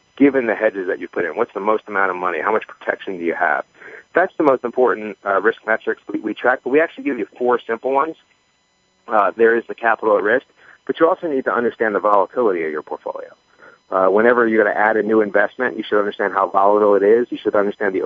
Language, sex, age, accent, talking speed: English, male, 40-59, American, 245 wpm